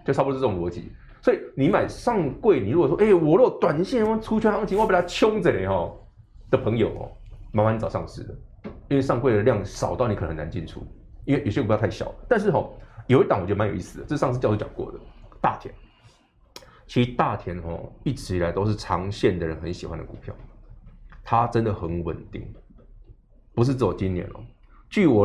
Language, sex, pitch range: Chinese, male, 95-135 Hz